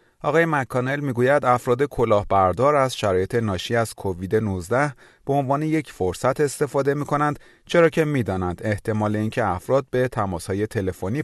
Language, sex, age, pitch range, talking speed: Persian, male, 30-49, 95-135 Hz, 140 wpm